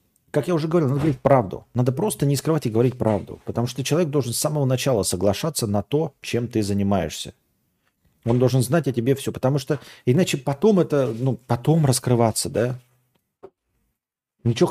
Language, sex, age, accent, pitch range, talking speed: Russian, male, 40-59, native, 110-145 Hz, 175 wpm